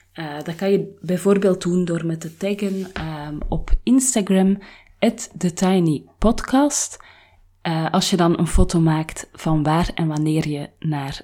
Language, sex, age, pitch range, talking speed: Dutch, female, 30-49, 155-205 Hz, 150 wpm